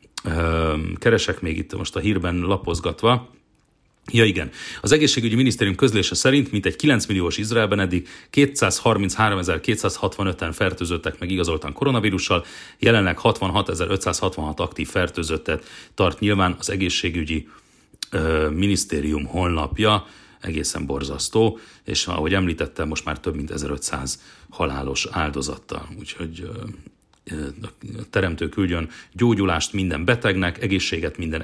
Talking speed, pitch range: 105 wpm, 80-110 Hz